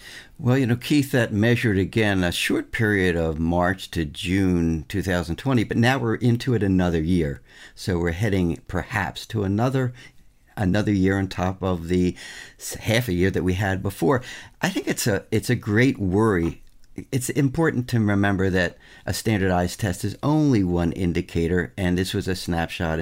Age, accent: 60-79, American